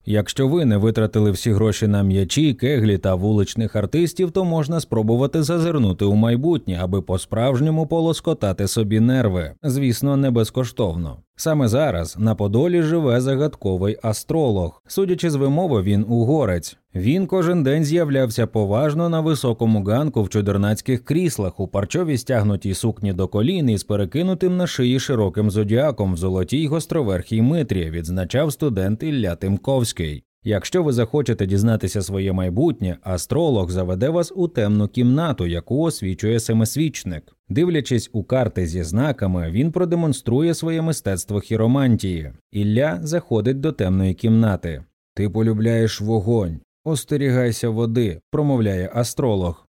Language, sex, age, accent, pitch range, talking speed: Ukrainian, male, 20-39, native, 100-145 Hz, 130 wpm